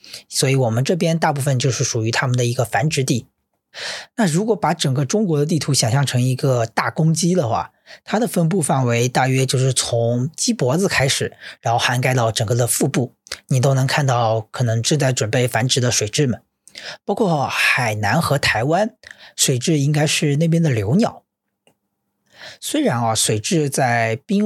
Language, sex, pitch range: Chinese, male, 125-165 Hz